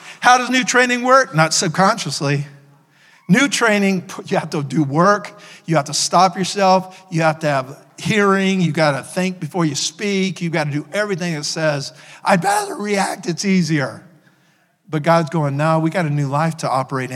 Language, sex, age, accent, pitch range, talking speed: English, male, 50-69, American, 160-215 Hz, 190 wpm